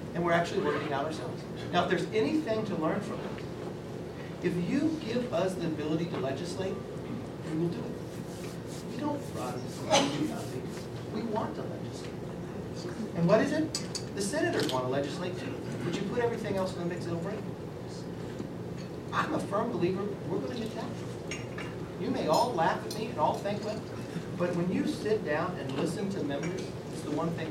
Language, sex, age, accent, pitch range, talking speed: English, male, 40-59, American, 145-190 Hz, 185 wpm